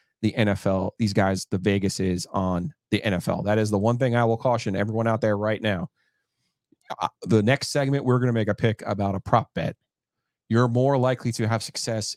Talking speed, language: 205 wpm, English